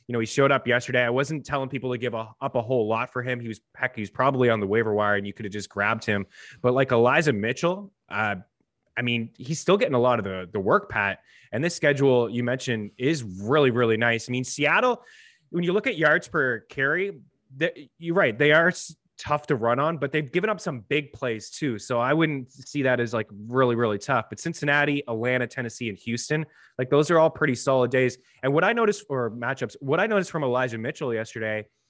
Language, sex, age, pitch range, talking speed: English, male, 20-39, 110-145 Hz, 235 wpm